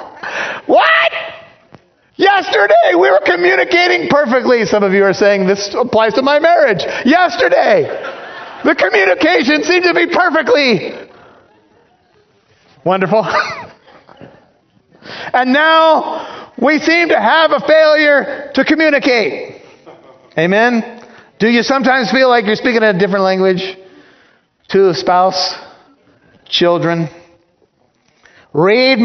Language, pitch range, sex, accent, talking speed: English, 200-320 Hz, male, American, 105 wpm